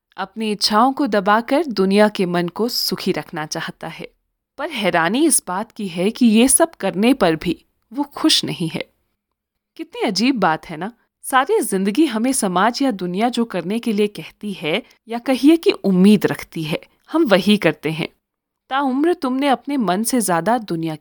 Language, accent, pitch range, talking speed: Hindi, native, 185-275 Hz, 135 wpm